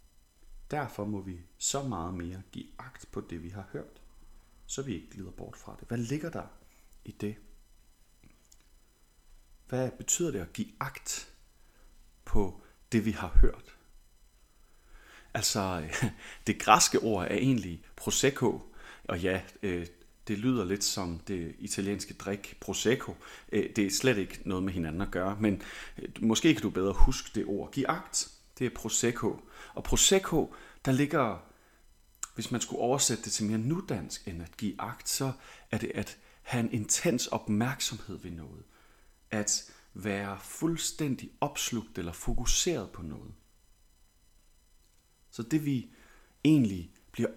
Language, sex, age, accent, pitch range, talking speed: Danish, male, 40-59, native, 95-120 Hz, 140 wpm